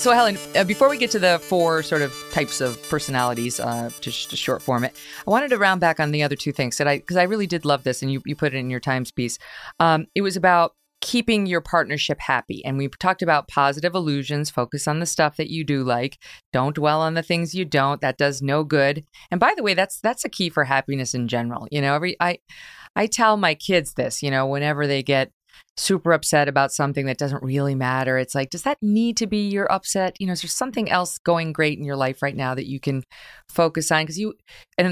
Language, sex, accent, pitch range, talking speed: English, female, American, 140-185 Hz, 245 wpm